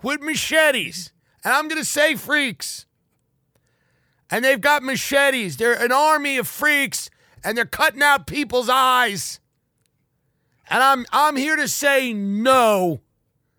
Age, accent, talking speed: 50-69, American, 130 wpm